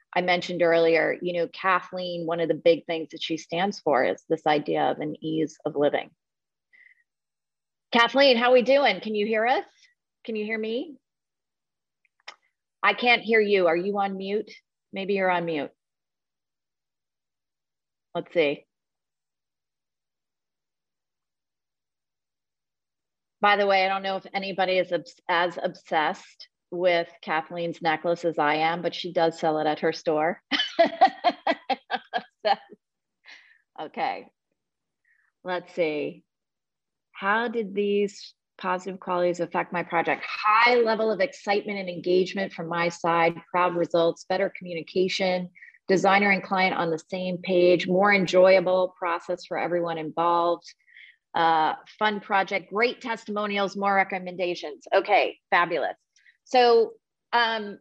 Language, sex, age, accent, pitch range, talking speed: English, female, 30-49, American, 170-205 Hz, 130 wpm